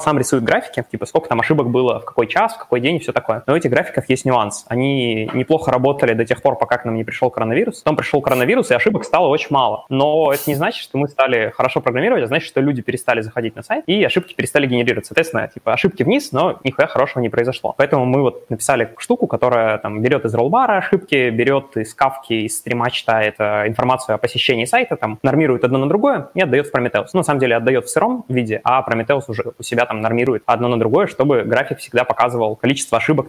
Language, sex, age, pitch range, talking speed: Russian, male, 20-39, 115-135 Hz, 230 wpm